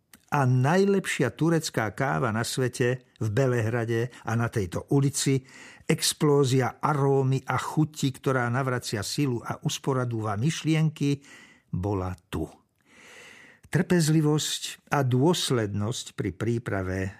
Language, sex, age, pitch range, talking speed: Slovak, male, 60-79, 105-140 Hz, 100 wpm